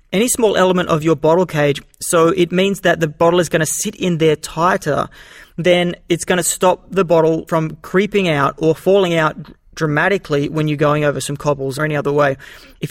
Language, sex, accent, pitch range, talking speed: English, male, Australian, 155-185 Hz, 210 wpm